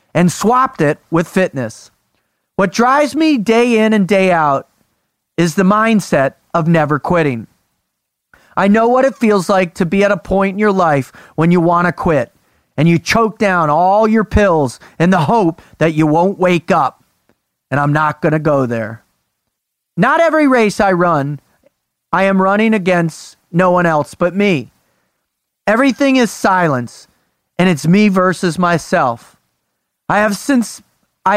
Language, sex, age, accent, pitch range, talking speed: English, male, 40-59, American, 165-220 Hz, 165 wpm